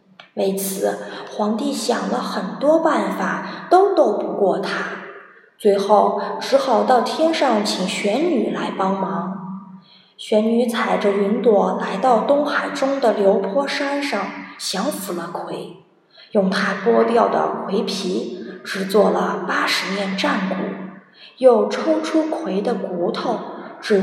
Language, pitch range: Chinese, 200-275 Hz